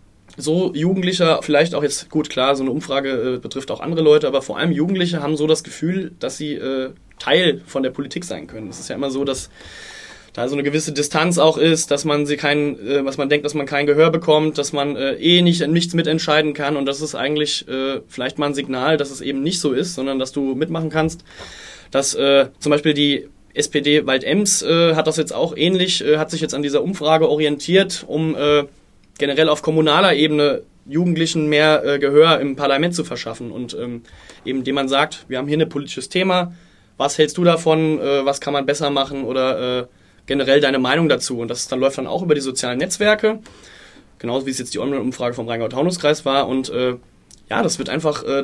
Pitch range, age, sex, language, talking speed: 135-155 Hz, 20-39, male, German, 215 wpm